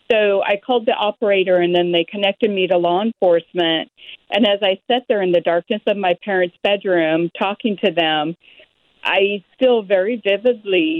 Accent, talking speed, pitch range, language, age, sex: American, 175 wpm, 180-220 Hz, English, 50-69, female